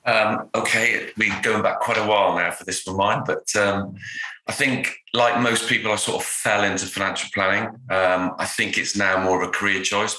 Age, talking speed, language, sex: 30-49, 225 wpm, English, male